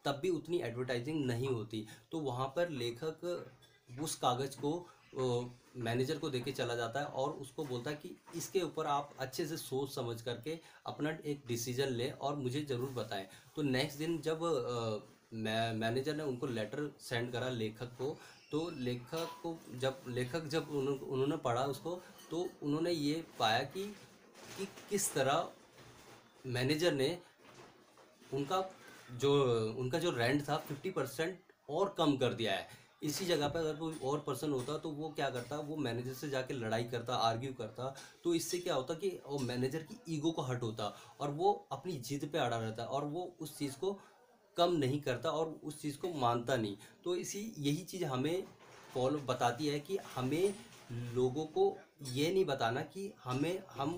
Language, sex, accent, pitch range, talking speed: Hindi, male, native, 125-165 Hz, 175 wpm